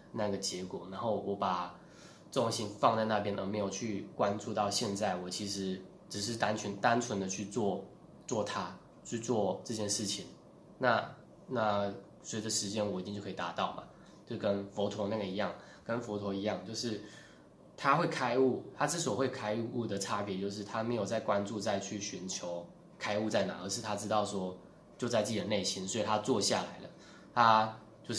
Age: 20-39